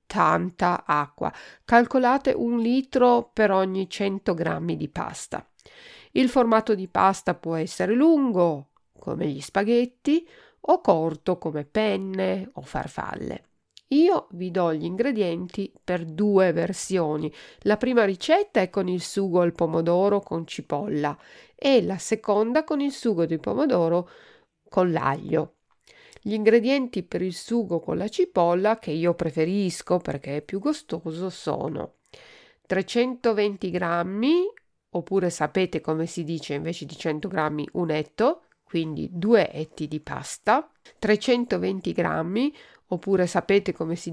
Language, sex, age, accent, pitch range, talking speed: Italian, female, 50-69, native, 165-235 Hz, 130 wpm